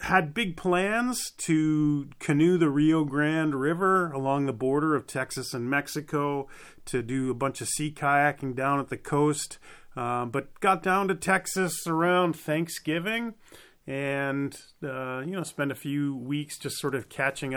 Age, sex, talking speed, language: 30-49, male, 160 wpm, English